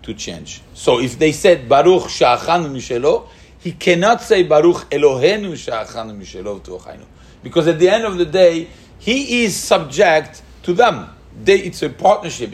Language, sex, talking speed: English, male, 160 wpm